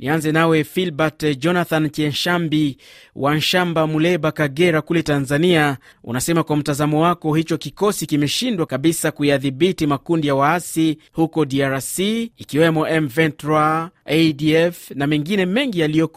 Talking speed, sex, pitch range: 120 wpm, male, 145-170 Hz